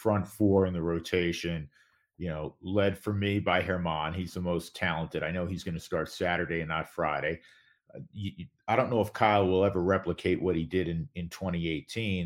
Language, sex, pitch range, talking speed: English, male, 80-95 Hz, 210 wpm